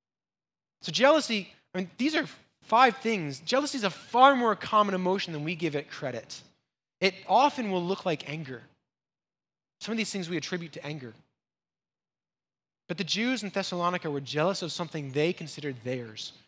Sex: male